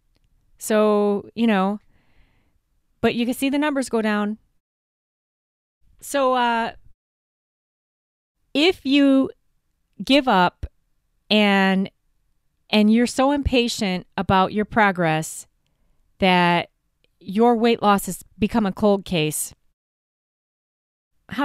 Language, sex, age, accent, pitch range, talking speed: English, female, 20-39, American, 185-255 Hz, 100 wpm